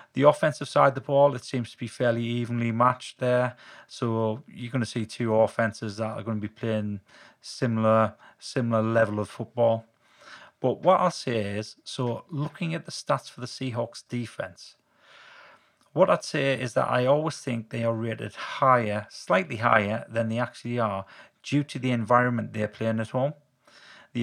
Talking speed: 180 wpm